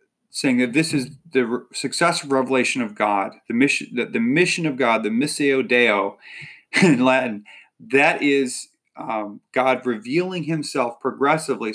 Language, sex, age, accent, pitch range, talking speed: English, male, 30-49, American, 125-175 Hz, 150 wpm